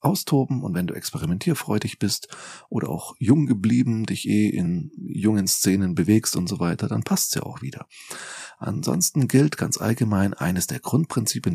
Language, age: German, 40-59